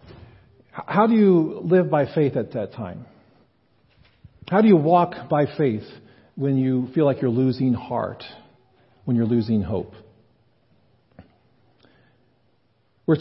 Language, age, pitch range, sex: English, 50-69, 125-170 Hz, male